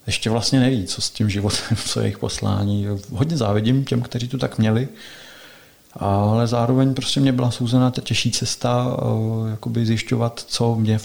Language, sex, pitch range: Czech, male, 105-120 Hz